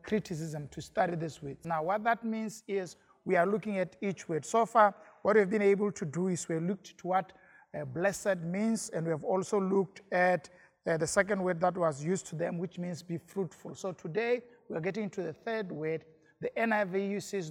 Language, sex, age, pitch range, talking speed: English, male, 50-69, 170-210 Hz, 210 wpm